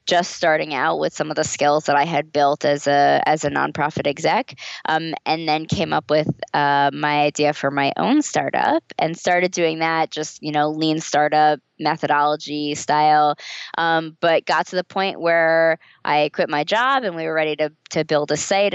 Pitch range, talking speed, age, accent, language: 145-170 Hz, 200 wpm, 20-39, American, English